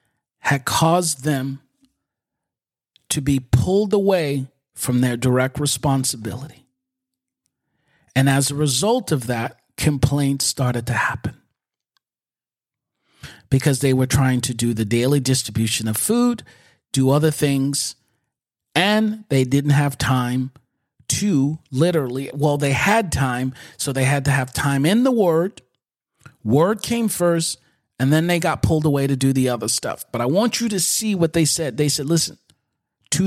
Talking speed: 150 wpm